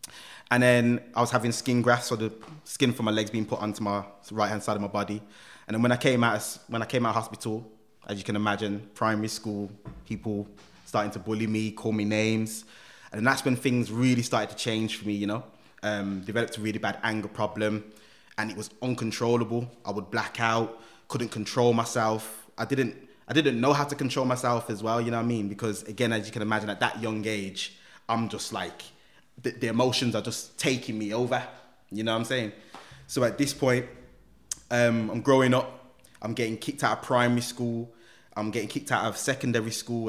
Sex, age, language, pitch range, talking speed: male, 20-39, English, 105-125 Hz, 215 wpm